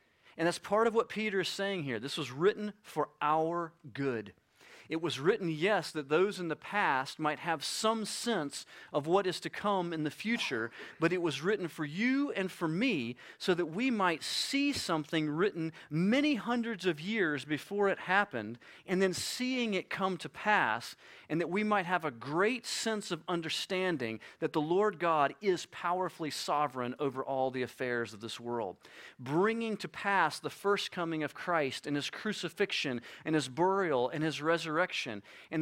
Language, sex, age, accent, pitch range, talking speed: English, male, 40-59, American, 150-200 Hz, 185 wpm